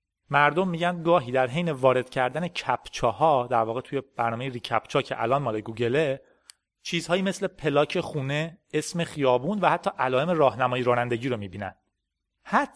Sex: male